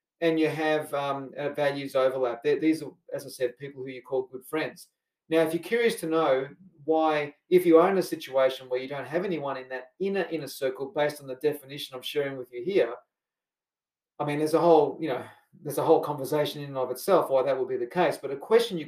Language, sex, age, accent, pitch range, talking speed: English, male, 40-59, Australian, 135-165 Hz, 240 wpm